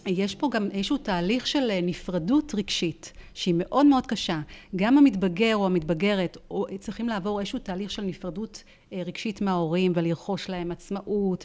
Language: Hebrew